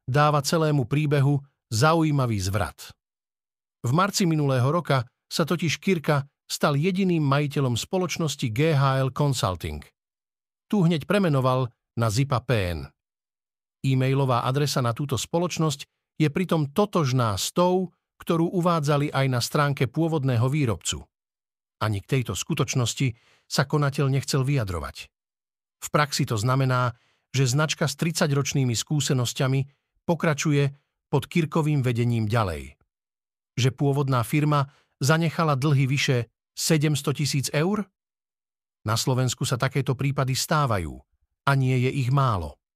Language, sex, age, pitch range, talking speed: Slovak, male, 50-69, 130-160 Hz, 115 wpm